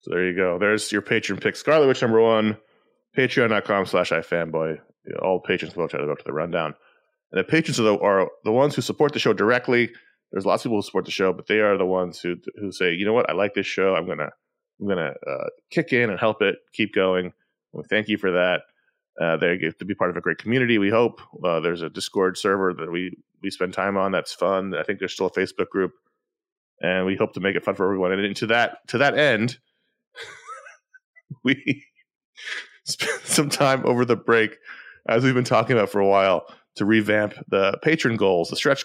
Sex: male